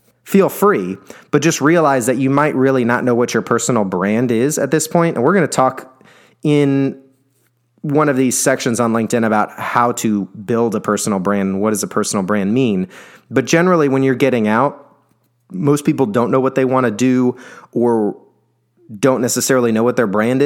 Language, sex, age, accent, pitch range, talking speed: English, male, 30-49, American, 115-145 Hz, 195 wpm